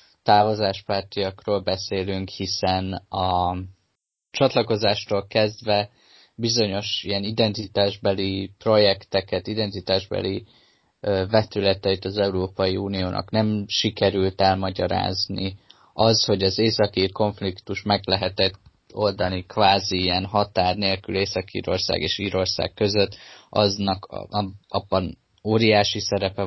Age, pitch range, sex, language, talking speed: 20-39, 95-105 Hz, male, Hungarian, 85 wpm